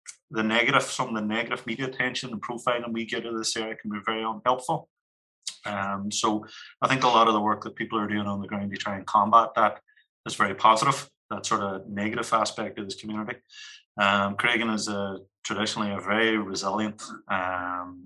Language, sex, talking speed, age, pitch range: English, male, 200 wpm, 30-49, 100-115 Hz